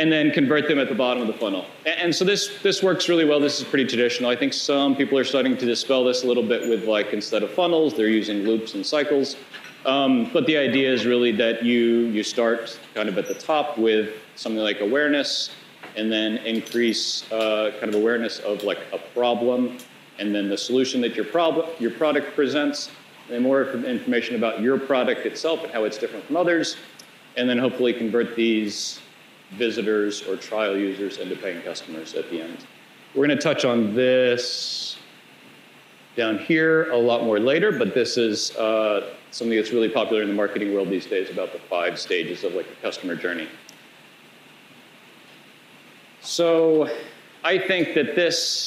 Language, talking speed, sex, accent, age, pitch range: English, 185 wpm, male, American, 40-59, 110-150 Hz